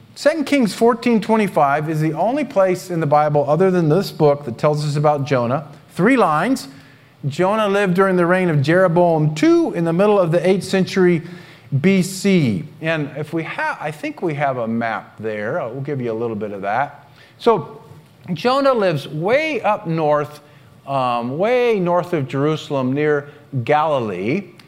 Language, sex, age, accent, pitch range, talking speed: English, male, 40-59, American, 145-195 Hz, 170 wpm